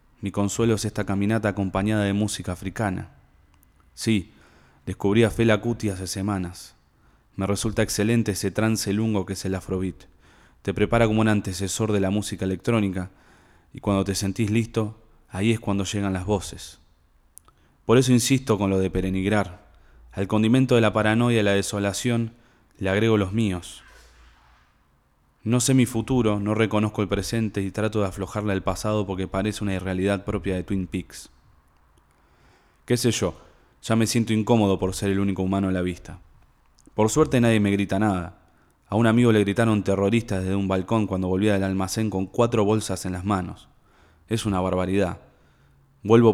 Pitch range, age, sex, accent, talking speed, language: 95-110 Hz, 20-39, male, Argentinian, 170 wpm, Spanish